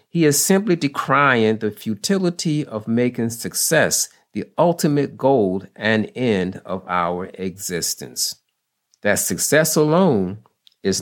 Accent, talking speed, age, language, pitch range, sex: American, 115 wpm, 50-69, English, 95-145 Hz, male